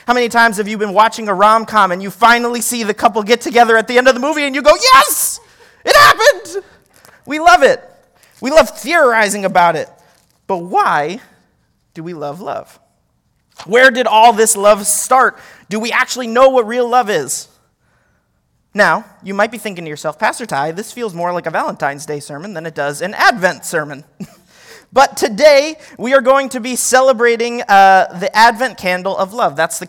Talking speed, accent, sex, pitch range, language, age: 195 wpm, American, male, 165-240 Hz, English, 30-49